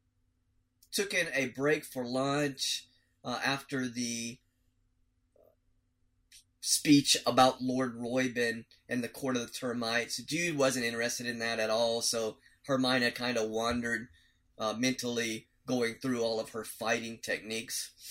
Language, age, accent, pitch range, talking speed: English, 20-39, American, 115-135 Hz, 135 wpm